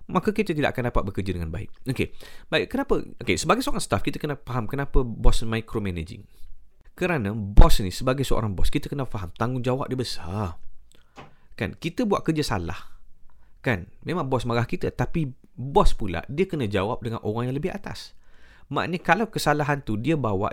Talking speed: 170 wpm